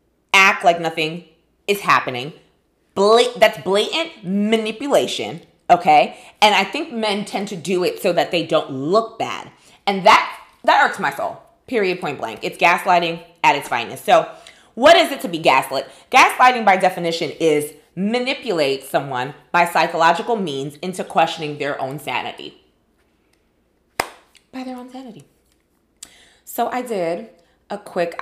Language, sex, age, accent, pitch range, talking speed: English, female, 20-39, American, 160-240 Hz, 145 wpm